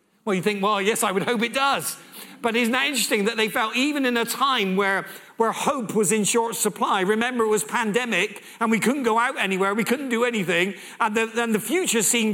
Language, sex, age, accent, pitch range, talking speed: English, male, 50-69, British, 160-225 Hz, 230 wpm